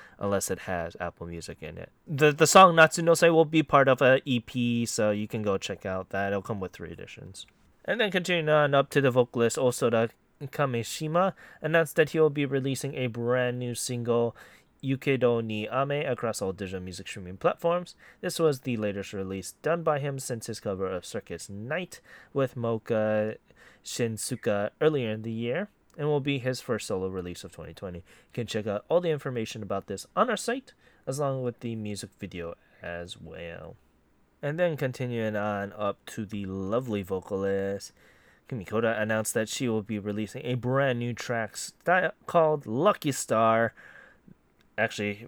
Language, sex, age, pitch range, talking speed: English, male, 20-39, 100-140 Hz, 175 wpm